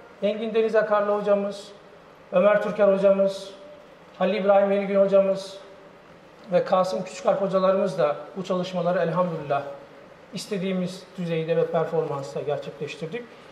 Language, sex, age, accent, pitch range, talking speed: Turkish, male, 50-69, native, 175-220 Hz, 105 wpm